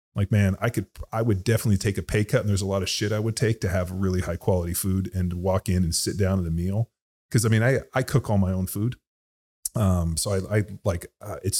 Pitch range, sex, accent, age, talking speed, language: 90-100 Hz, male, American, 30-49, 275 wpm, English